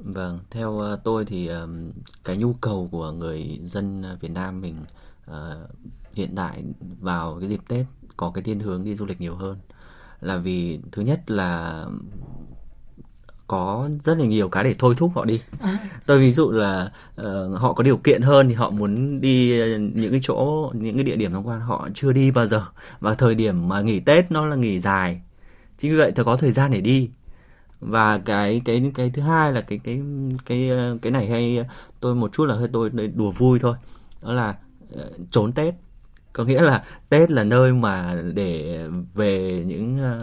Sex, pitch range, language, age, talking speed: male, 95-125 Hz, Vietnamese, 20-39, 185 wpm